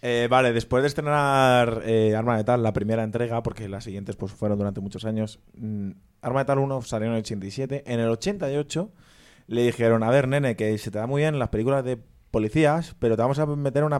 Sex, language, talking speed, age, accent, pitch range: male, Spanish, 225 wpm, 20-39, Spanish, 110-140 Hz